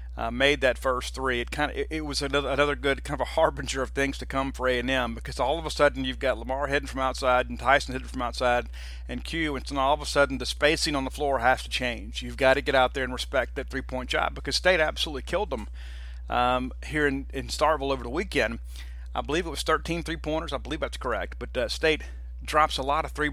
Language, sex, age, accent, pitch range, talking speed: English, male, 40-59, American, 120-150 Hz, 255 wpm